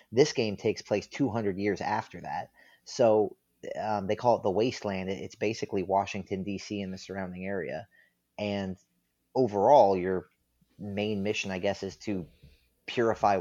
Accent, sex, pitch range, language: American, male, 95-110 Hz, English